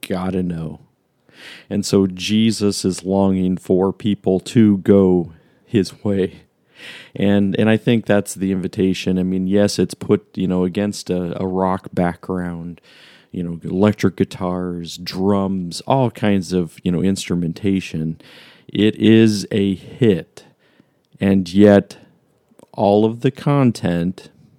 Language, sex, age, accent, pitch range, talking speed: English, male, 40-59, American, 90-105 Hz, 130 wpm